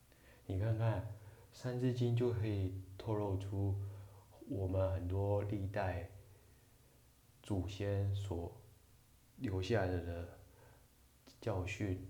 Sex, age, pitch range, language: male, 20-39, 90-105 Hz, Chinese